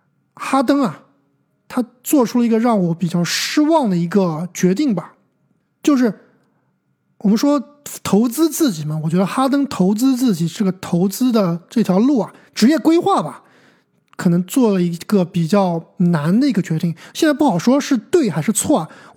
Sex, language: male, Chinese